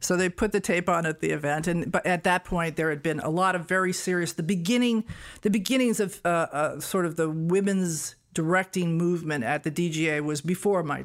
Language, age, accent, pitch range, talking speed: English, 50-69, American, 145-185 Hz, 225 wpm